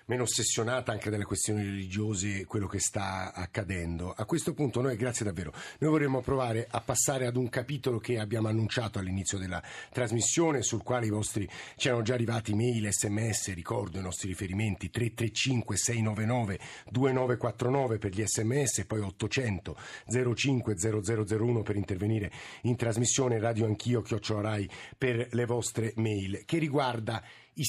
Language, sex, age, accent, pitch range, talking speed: Italian, male, 50-69, native, 105-130 Hz, 145 wpm